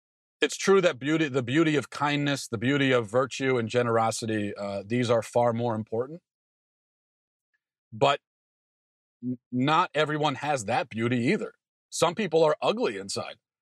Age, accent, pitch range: 40-59, American, 120-145 Hz